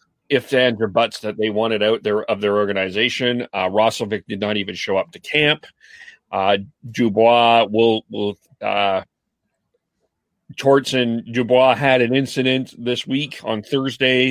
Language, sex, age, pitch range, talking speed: English, male, 40-59, 110-140 Hz, 150 wpm